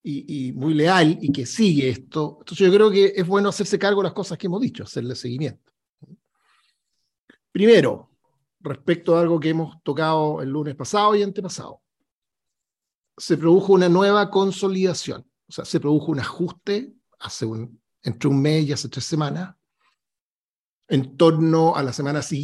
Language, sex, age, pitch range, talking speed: Spanish, male, 50-69, 150-195 Hz, 165 wpm